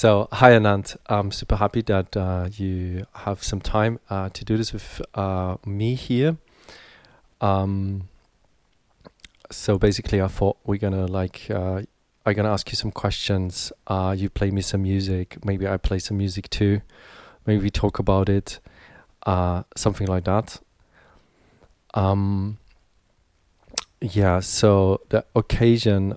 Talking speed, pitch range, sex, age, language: 140 wpm, 95-110 Hz, male, 30-49, English